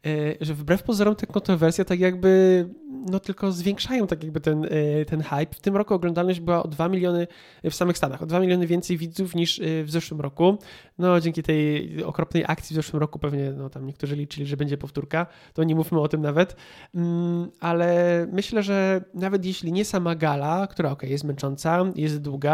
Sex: male